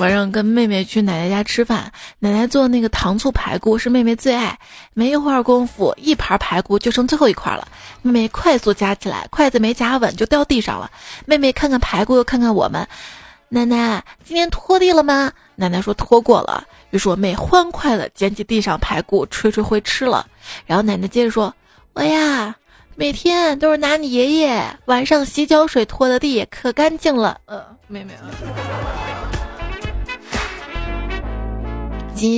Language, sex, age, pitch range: Chinese, female, 20-39, 210-275 Hz